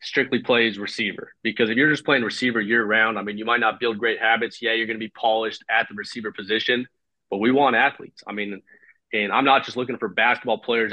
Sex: male